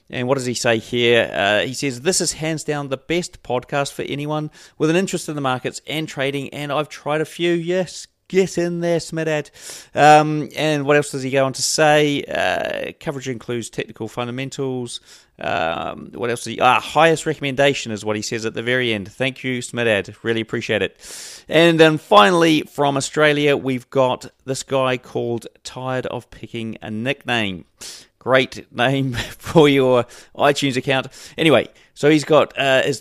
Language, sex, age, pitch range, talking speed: English, male, 30-49, 120-150 Hz, 175 wpm